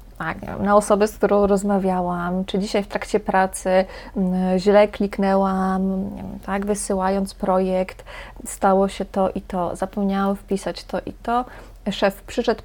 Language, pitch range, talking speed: Polish, 190-225 Hz, 130 wpm